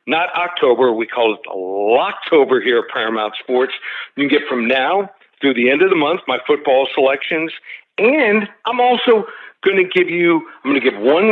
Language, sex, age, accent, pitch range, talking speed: English, male, 60-79, American, 135-185 Hz, 195 wpm